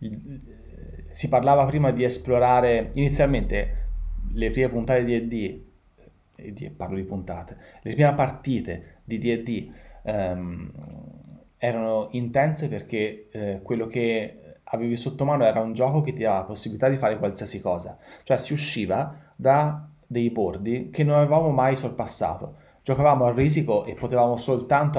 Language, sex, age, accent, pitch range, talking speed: Italian, male, 30-49, native, 100-130 Hz, 140 wpm